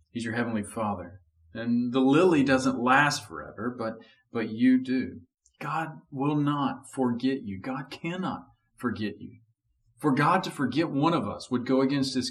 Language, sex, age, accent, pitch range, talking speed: English, male, 40-59, American, 95-130 Hz, 165 wpm